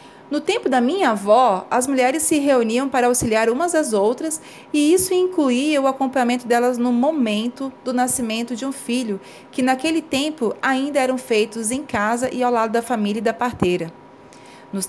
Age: 30-49